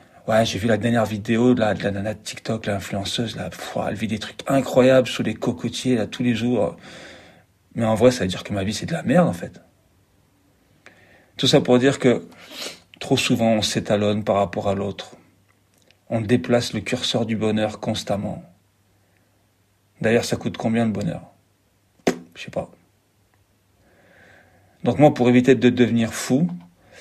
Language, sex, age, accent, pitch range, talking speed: French, male, 40-59, French, 100-115 Hz, 175 wpm